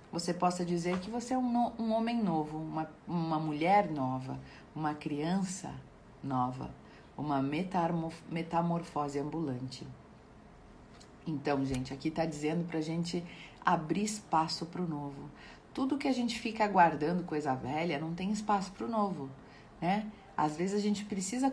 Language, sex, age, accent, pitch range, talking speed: Portuguese, female, 40-59, Brazilian, 160-205 Hz, 145 wpm